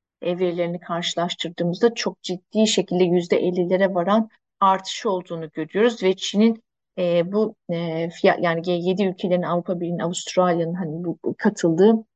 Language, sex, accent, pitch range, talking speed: Turkish, female, native, 180-225 Hz, 125 wpm